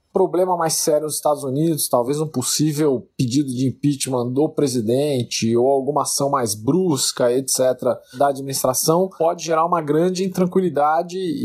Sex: male